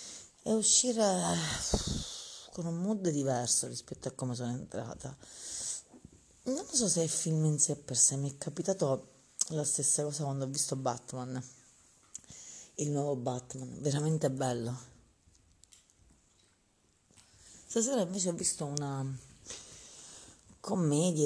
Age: 30-49